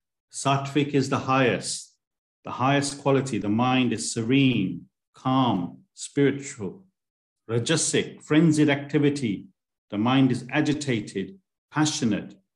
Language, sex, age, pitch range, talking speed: English, male, 50-69, 110-145 Hz, 100 wpm